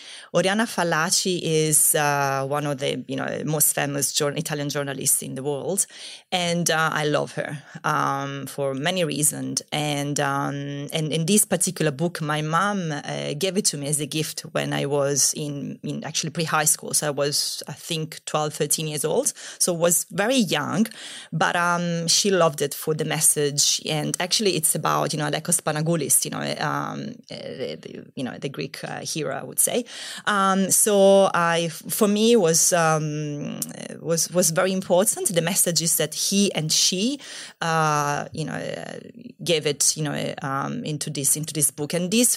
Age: 20-39